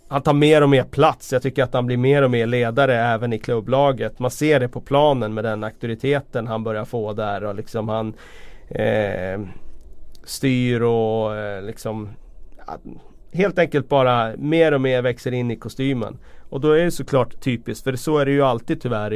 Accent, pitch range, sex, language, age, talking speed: native, 110-135 Hz, male, Swedish, 30-49, 195 wpm